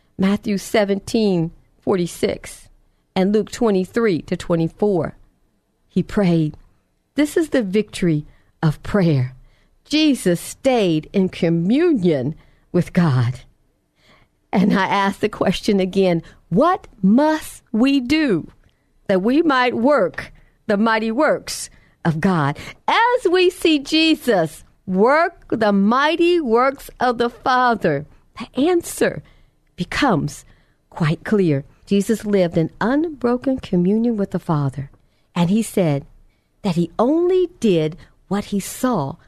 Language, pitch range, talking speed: English, 175-270 Hz, 120 wpm